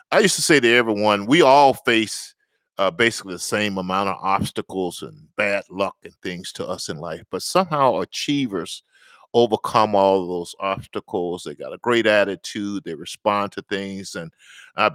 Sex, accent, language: male, American, English